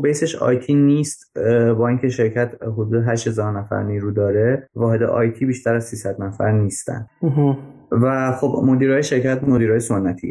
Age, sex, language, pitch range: 20-39, male, Persian, 105-130 Hz